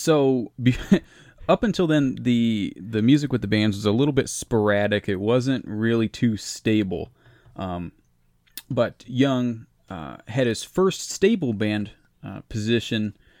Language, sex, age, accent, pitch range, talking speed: English, male, 20-39, American, 95-120 Hz, 140 wpm